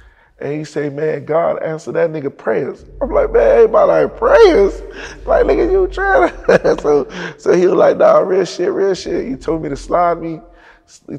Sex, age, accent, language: male, 20-39, American, English